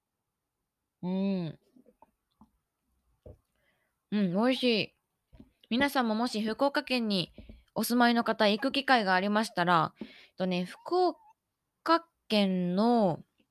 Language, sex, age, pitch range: Japanese, female, 20-39, 200-260 Hz